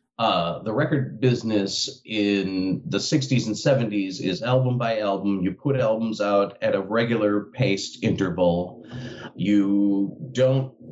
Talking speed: 130 wpm